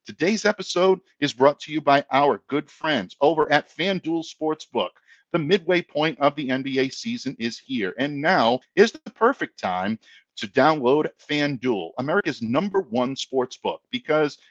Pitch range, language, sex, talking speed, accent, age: 120-190 Hz, English, male, 155 wpm, American, 50-69